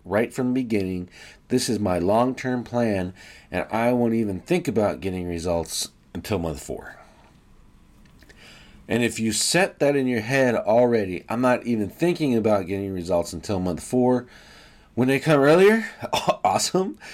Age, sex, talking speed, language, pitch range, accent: 40-59, male, 155 wpm, English, 95-135 Hz, American